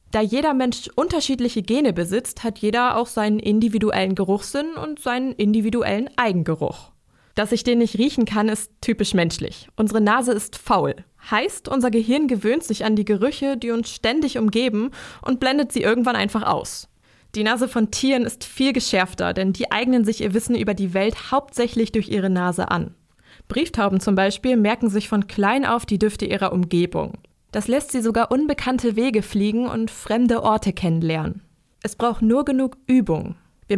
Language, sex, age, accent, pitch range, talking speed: German, female, 20-39, German, 200-245 Hz, 170 wpm